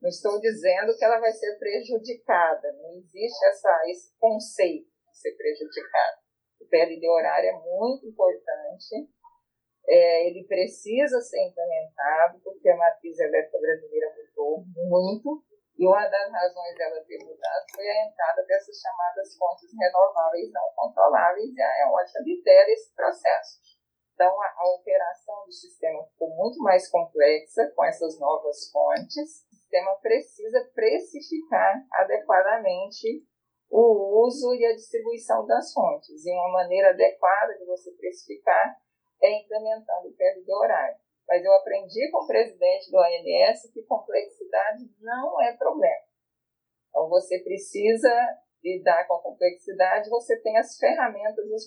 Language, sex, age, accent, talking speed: Portuguese, female, 40-59, Brazilian, 140 wpm